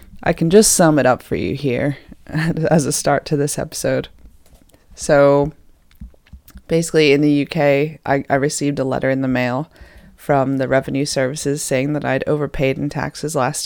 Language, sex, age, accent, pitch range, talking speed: English, female, 20-39, American, 140-160 Hz, 170 wpm